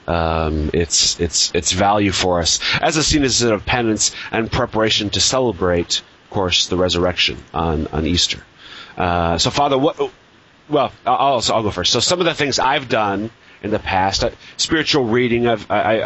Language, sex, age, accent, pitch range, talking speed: English, male, 30-49, American, 90-110 Hz, 175 wpm